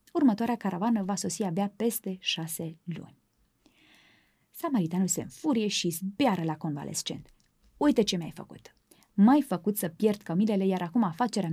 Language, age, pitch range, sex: Romanian, 20-39, 180-230 Hz, female